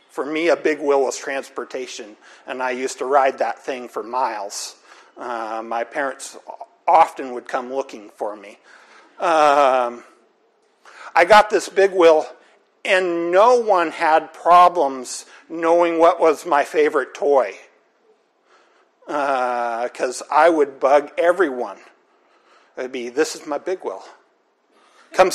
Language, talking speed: English, 135 wpm